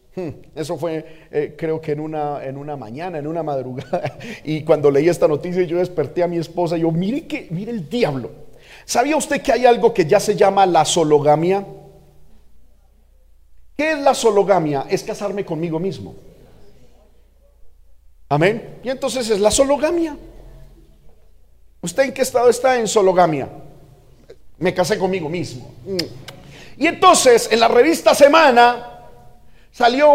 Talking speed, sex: 145 wpm, male